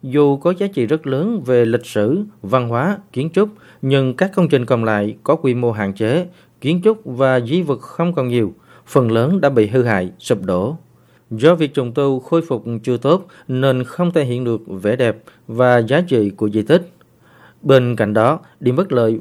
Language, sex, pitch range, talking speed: Vietnamese, male, 115-165 Hz, 210 wpm